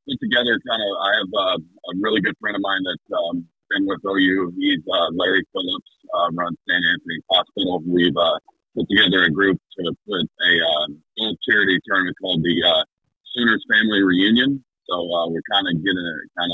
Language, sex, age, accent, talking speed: English, male, 50-69, American, 205 wpm